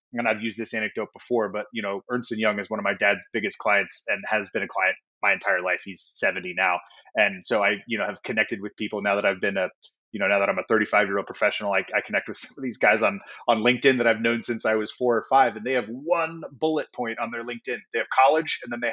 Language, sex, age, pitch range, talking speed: English, male, 20-39, 110-125 Hz, 275 wpm